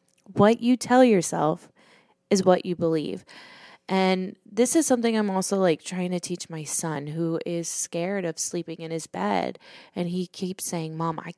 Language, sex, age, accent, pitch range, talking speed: English, female, 20-39, American, 175-220 Hz, 180 wpm